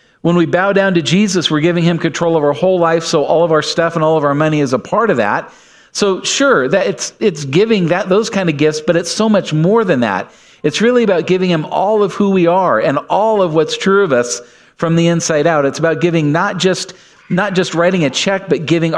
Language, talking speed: English, 255 wpm